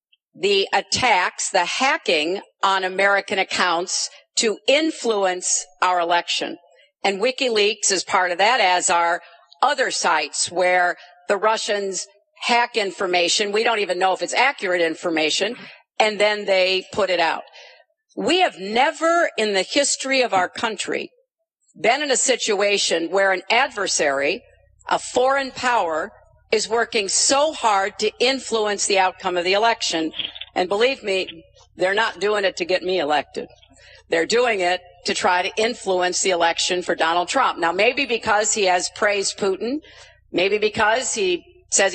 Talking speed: 150 wpm